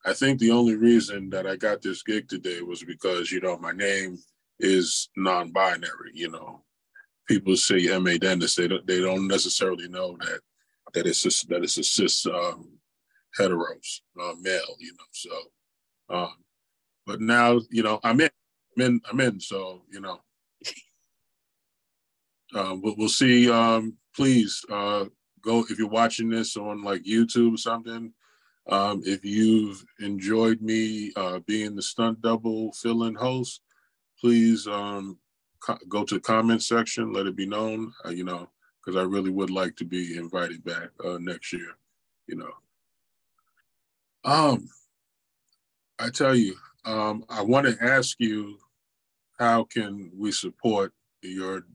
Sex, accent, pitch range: male, American, 95-115 Hz